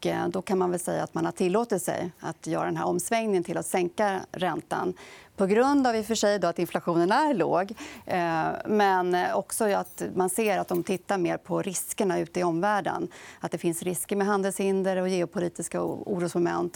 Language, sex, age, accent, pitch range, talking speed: Swedish, female, 30-49, native, 170-205 Hz, 195 wpm